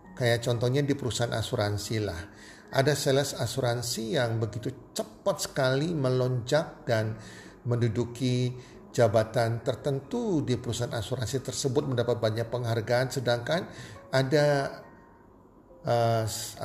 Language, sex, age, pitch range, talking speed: Indonesian, male, 50-69, 115-155 Hz, 100 wpm